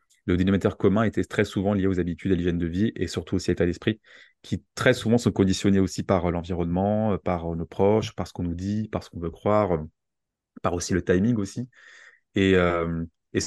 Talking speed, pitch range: 210 wpm, 85-105 Hz